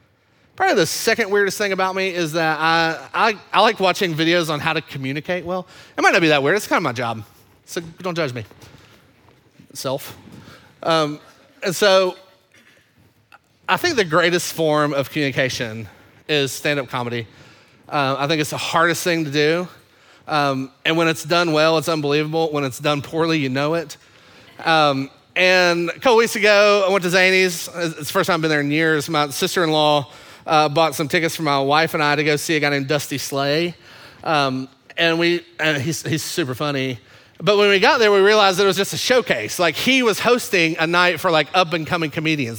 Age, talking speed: 30-49, 205 wpm